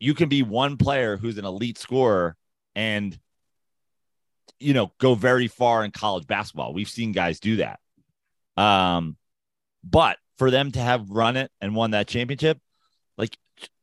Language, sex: English, male